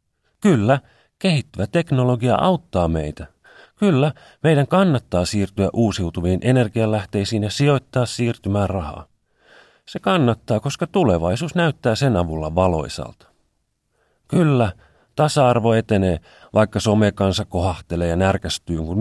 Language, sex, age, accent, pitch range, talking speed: Finnish, male, 40-59, native, 80-120 Hz, 100 wpm